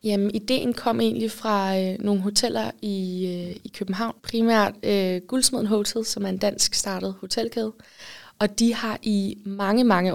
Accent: native